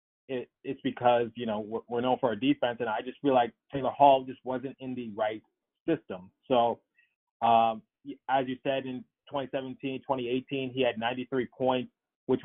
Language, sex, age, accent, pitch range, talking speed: English, male, 20-39, American, 120-140 Hz, 175 wpm